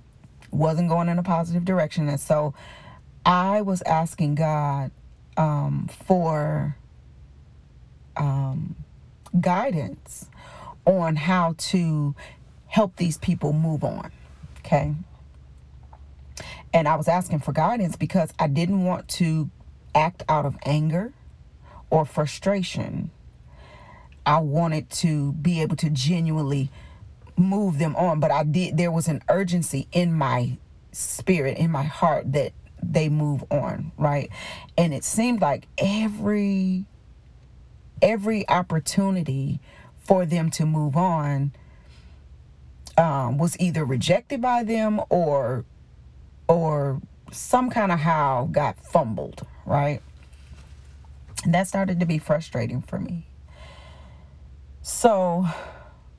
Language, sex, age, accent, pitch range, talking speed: English, female, 40-59, American, 115-175 Hz, 115 wpm